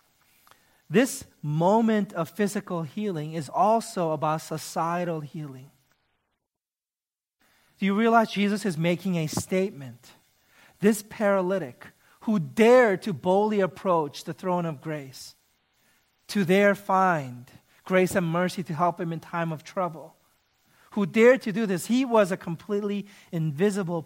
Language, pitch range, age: English, 165-215 Hz, 40-59